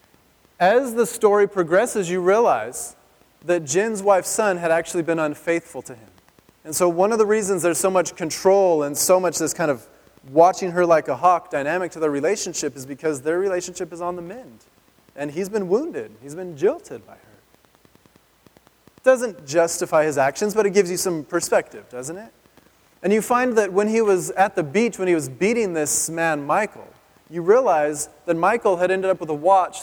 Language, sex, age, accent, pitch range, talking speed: English, male, 20-39, American, 160-205 Hz, 195 wpm